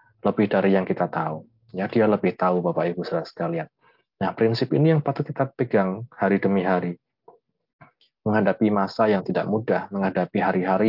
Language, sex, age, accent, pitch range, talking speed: Indonesian, male, 20-39, native, 95-115 Hz, 165 wpm